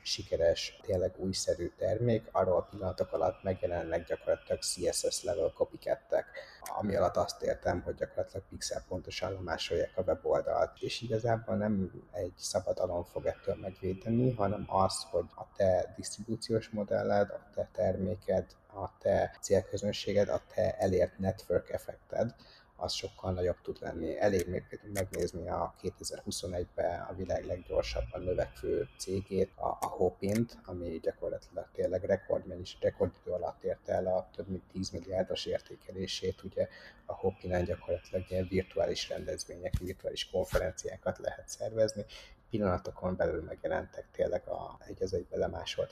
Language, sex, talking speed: Hungarian, male, 125 wpm